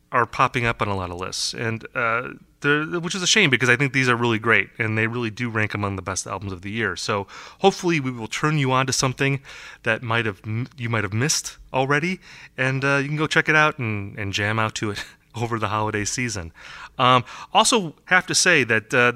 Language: English